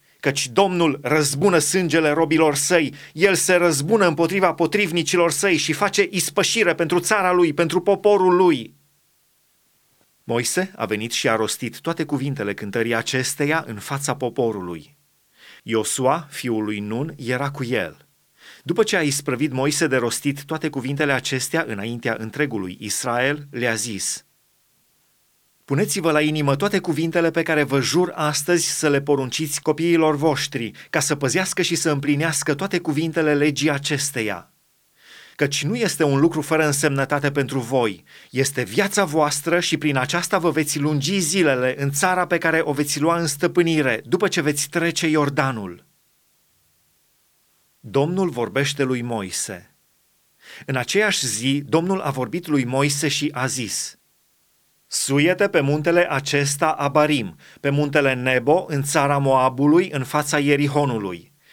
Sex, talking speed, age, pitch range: male, 140 wpm, 30-49, 135-170 Hz